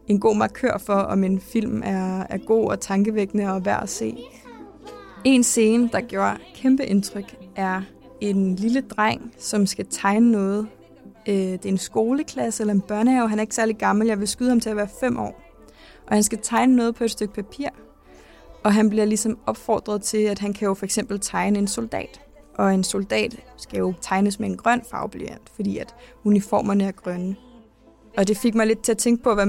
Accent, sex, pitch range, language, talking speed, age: native, female, 195-230 Hz, Danish, 205 wpm, 20-39